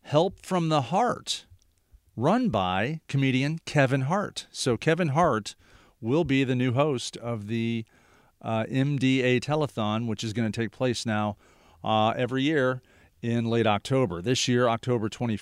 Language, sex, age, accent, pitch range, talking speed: English, male, 40-59, American, 110-135 Hz, 150 wpm